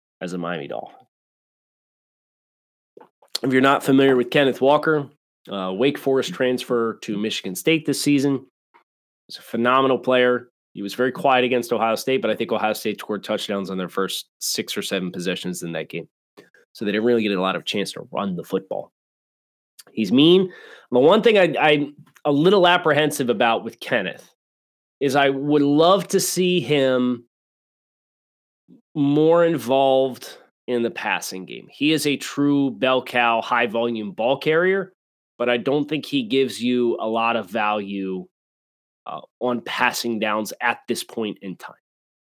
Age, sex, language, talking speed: 30-49, male, English, 165 wpm